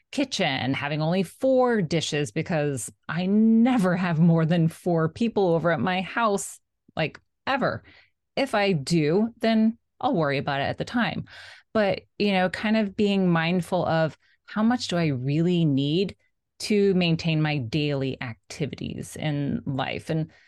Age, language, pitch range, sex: 30-49, English, 150-195 Hz, female